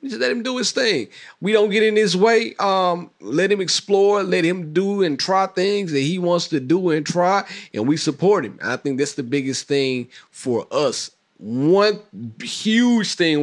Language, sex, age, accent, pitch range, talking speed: English, male, 30-49, American, 115-165 Hz, 195 wpm